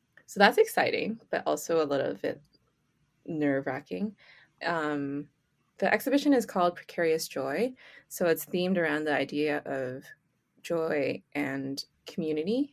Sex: female